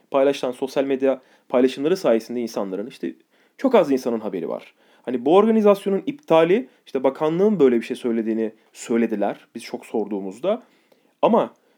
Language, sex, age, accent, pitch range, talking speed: Turkish, male, 30-49, native, 125-180 Hz, 140 wpm